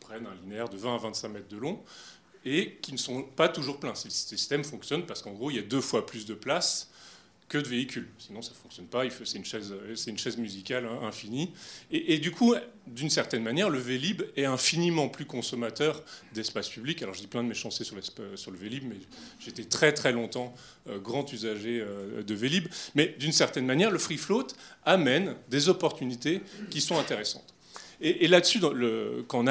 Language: French